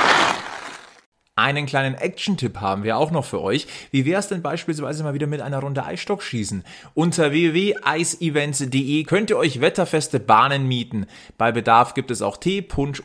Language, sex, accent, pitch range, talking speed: German, male, German, 110-150 Hz, 165 wpm